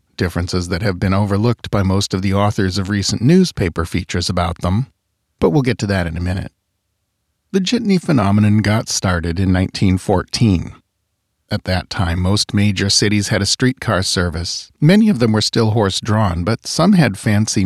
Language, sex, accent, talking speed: English, male, American, 175 wpm